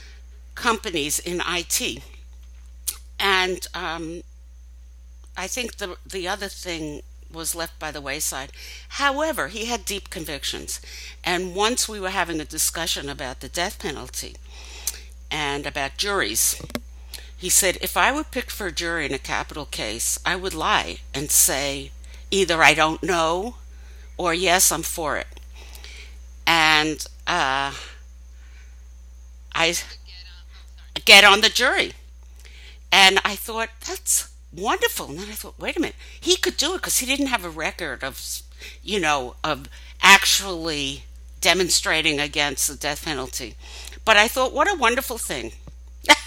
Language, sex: English, female